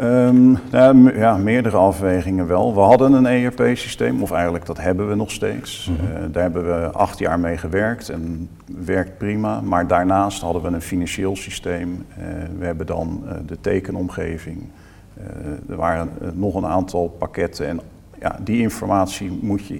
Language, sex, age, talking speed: Dutch, male, 50-69, 175 wpm